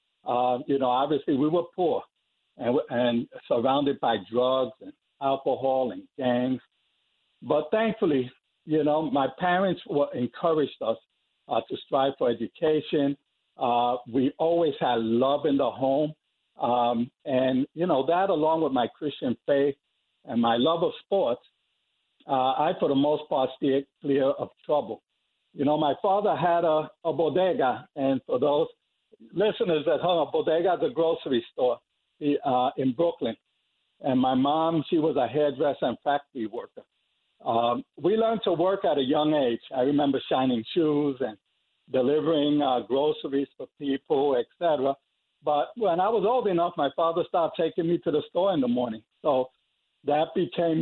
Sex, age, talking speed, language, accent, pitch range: male, 60-79, 160 wpm, English, American, 130-165 Hz